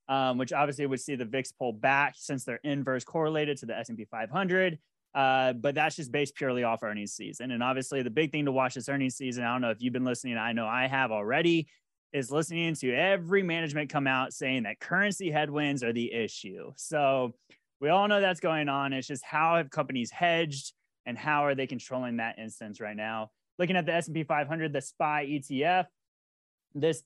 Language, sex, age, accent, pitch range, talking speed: English, male, 20-39, American, 130-170 Hz, 205 wpm